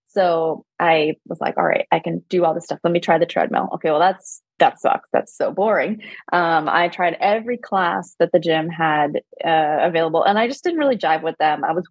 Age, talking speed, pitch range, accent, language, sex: 20-39, 230 wpm, 165-215 Hz, American, English, female